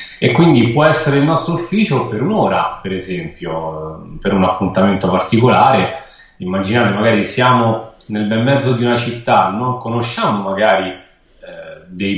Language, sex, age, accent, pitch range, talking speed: Italian, male, 30-49, native, 100-130 Hz, 145 wpm